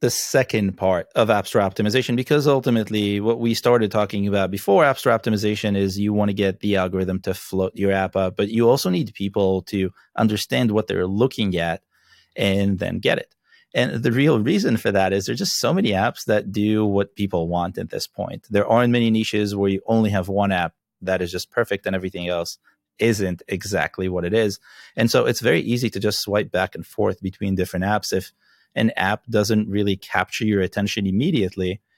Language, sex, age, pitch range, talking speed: English, male, 30-49, 95-110 Hz, 205 wpm